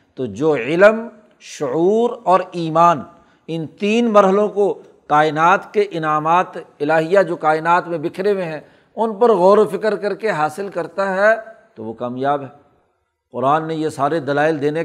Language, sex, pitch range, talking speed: Urdu, male, 155-215 Hz, 160 wpm